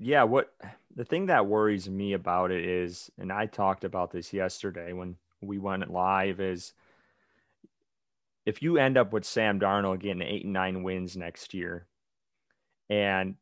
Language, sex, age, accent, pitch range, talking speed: English, male, 30-49, American, 95-105 Hz, 160 wpm